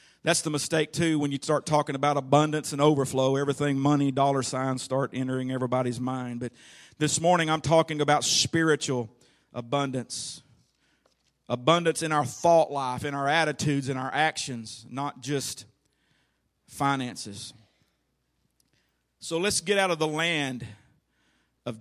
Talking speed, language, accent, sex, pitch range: 140 wpm, English, American, male, 130-150 Hz